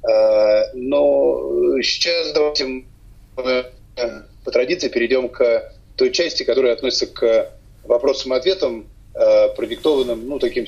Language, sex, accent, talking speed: Russian, male, native, 100 wpm